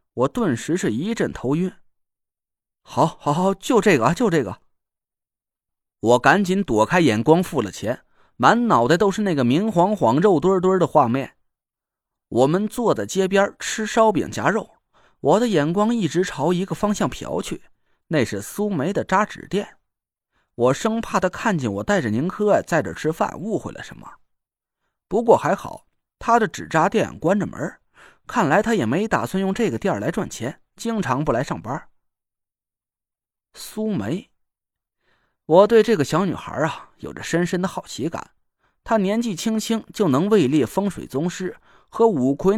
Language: Chinese